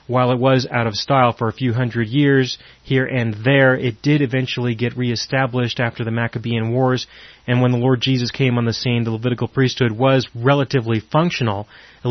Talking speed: 195 wpm